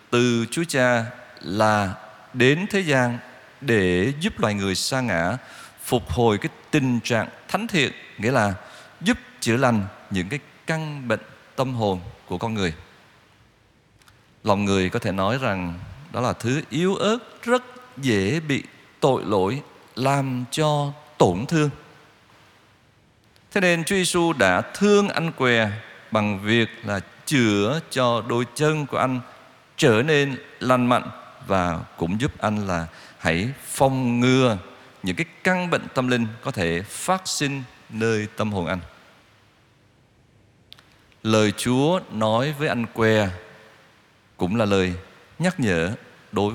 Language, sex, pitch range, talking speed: Vietnamese, male, 105-140 Hz, 140 wpm